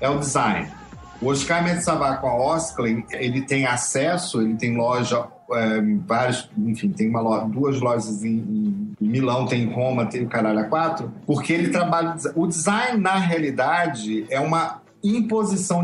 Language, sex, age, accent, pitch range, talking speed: Portuguese, male, 40-59, Brazilian, 125-185 Hz, 165 wpm